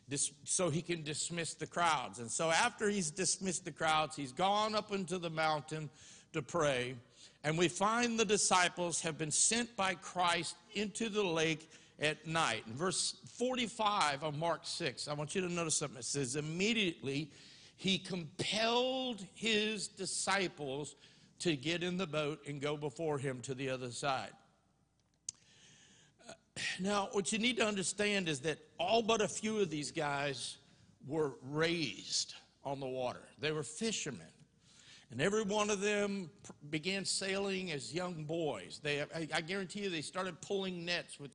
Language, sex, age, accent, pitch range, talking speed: English, male, 50-69, American, 150-195 Hz, 160 wpm